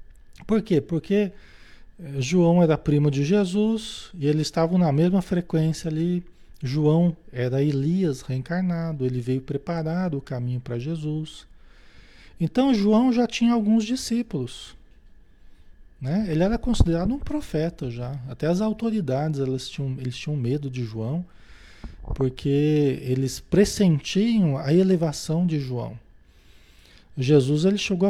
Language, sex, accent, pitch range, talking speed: Portuguese, male, Brazilian, 130-180 Hz, 120 wpm